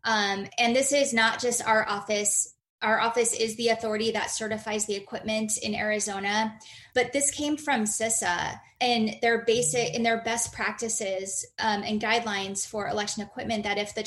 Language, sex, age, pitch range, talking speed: English, female, 20-39, 205-230 Hz, 170 wpm